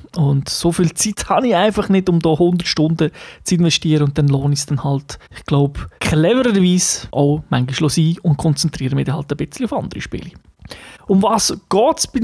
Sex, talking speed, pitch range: male, 200 wpm, 145-180 Hz